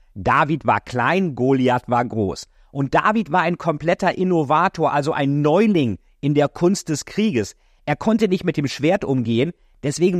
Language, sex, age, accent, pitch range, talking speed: German, male, 50-69, German, 120-165 Hz, 165 wpm